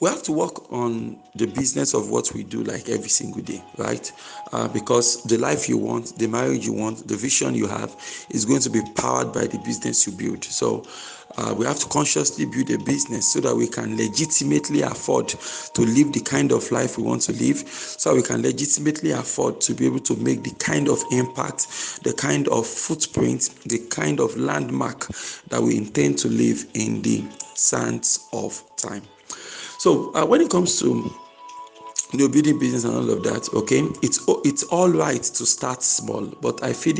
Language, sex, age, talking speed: English, male, 50-69, 195 wpm